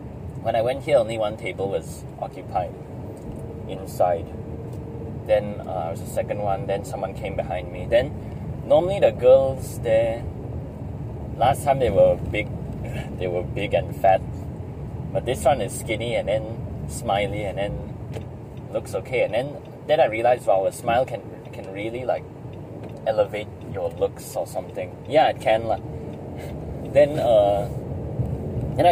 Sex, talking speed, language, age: male, 150 wpm, English, 20-39